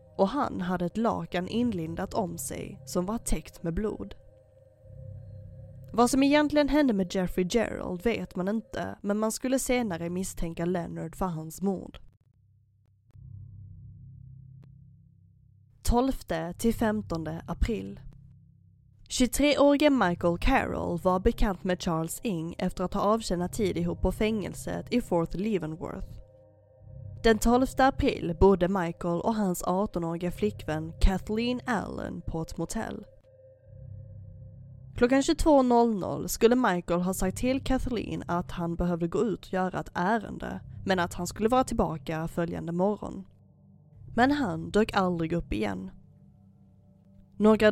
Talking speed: 125 wpm